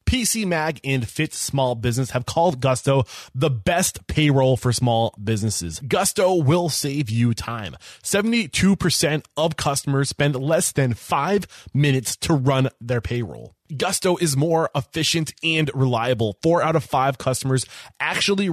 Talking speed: 145 wpm